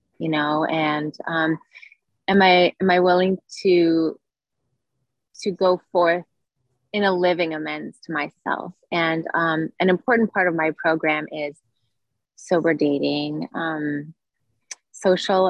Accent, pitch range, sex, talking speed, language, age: American, 155-175 Hz, female, 125 wpm, English, 20-39